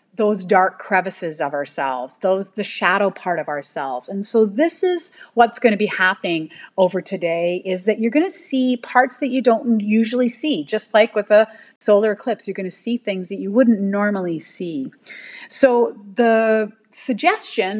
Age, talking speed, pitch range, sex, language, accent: 40-59, 180 wpm, 190-250 Hz, female, English, American